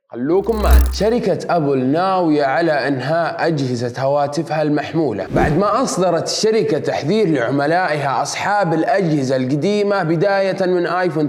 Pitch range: 165-220 Hz